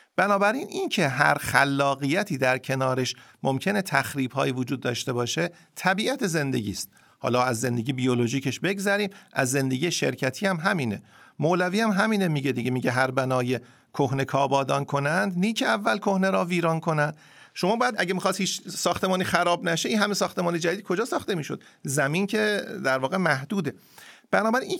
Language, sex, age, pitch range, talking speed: Persian, male, 50-69, 130-185 Hz, 155 wpm